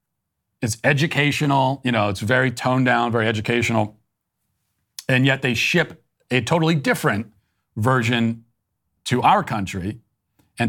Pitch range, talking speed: 105-140 Hz, 125 wpm